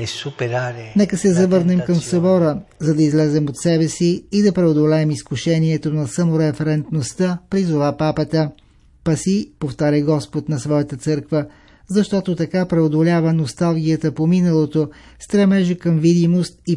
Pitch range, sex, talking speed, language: 150-180 Hz, male, 125 wpm, Bulgarian